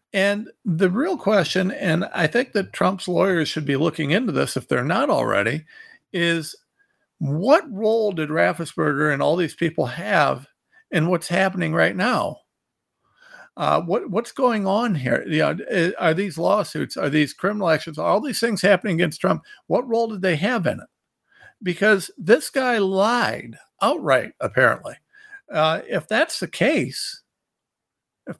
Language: English